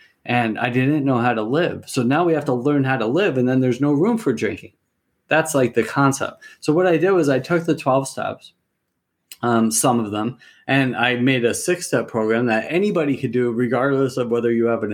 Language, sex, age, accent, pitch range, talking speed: English, male, 30-49, American, 110-135 Hz, 230 wpm